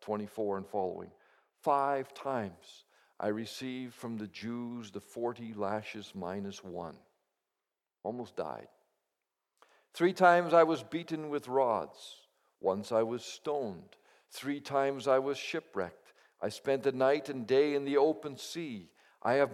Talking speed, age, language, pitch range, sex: 140 wpm, 50-69, English, 125-155 Hz, male